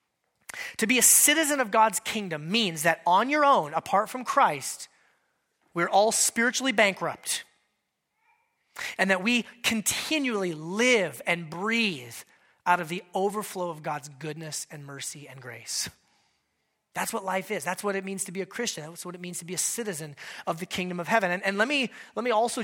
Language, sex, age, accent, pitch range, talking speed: English, male, 30-49, American, 175-240 Hz, 185 wpm